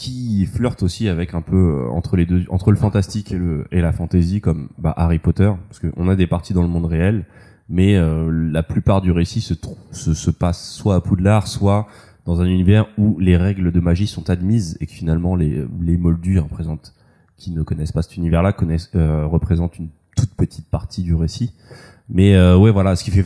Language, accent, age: French, French, 20-39